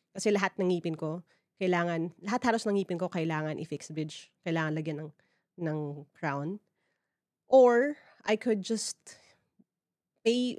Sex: female